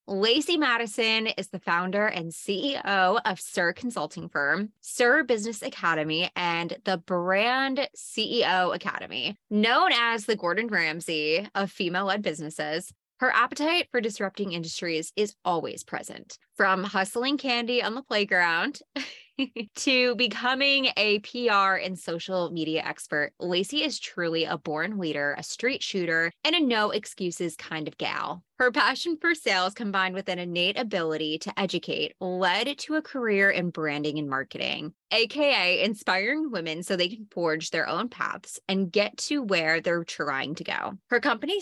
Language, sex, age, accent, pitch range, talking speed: English, female, 20-39, American, 170-240 Hz, 150 wpm